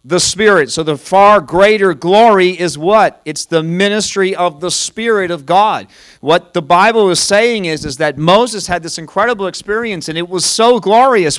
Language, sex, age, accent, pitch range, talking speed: English, male, 40-59, American, 150-210 Hz, 185 wpm